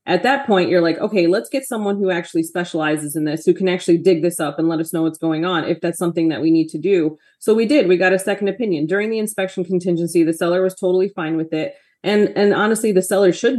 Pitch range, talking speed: 165-195 Hz, 265 wpm